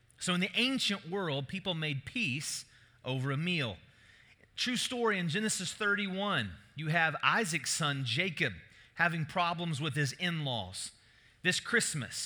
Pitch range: 140-195 Hz